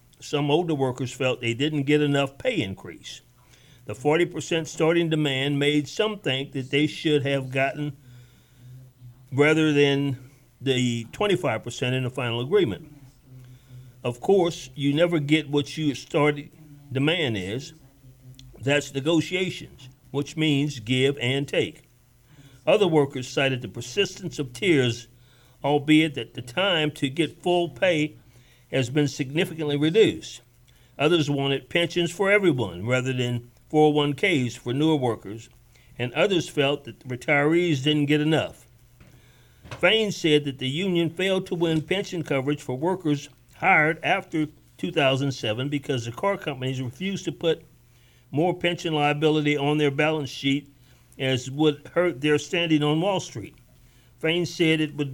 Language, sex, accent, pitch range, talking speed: English, male, American, 130-155 Hz, 140 wpm